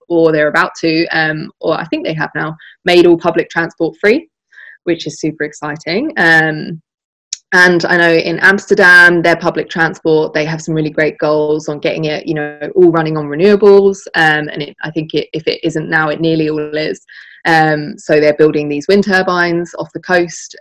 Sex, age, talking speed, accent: female, 20-39, 190 wpm, British